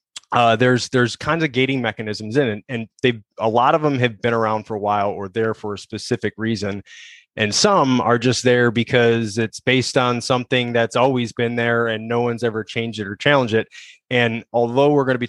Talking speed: 220 wpm